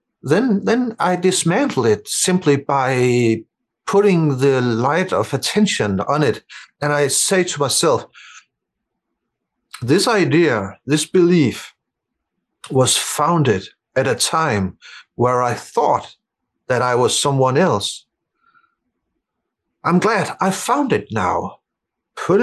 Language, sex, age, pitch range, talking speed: English, male, 60-79, 130-190 Hz, 115 wpm